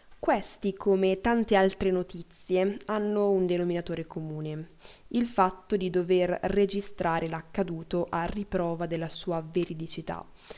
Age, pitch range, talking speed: 20-39, 170-195 Hz, 115 wpm